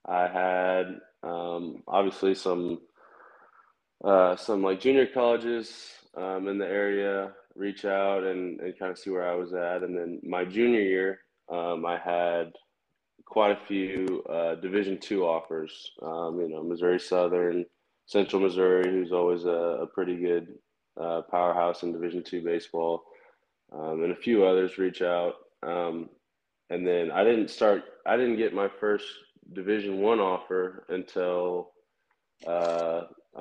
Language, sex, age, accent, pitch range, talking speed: English, male, 20-39, American, 85-95 Hz, 145 wpm